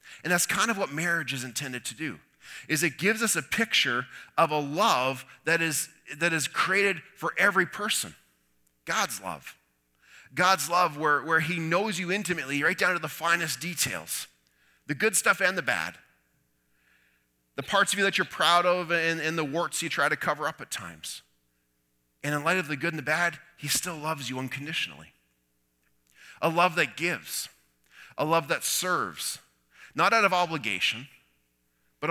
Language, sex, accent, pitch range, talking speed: English, male, American, 100-165 Hz, 180 wpm